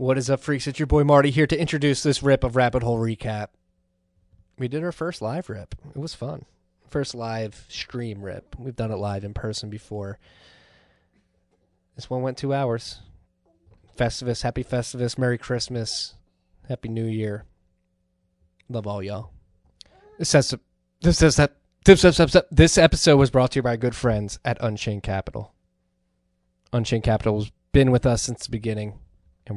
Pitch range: 100-125 Hz